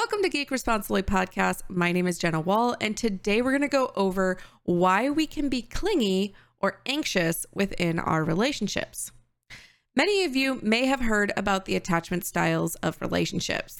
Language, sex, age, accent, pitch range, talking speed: English, female, 20-39, American, 190-240 Hz, 170 wpm